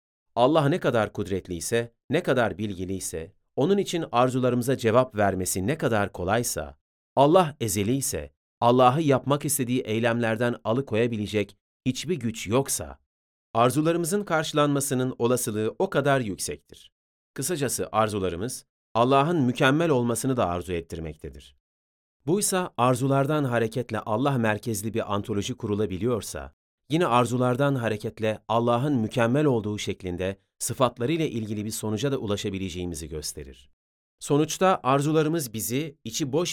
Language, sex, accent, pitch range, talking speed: Turkish, male, native, 100-135 Hz, 110 wpm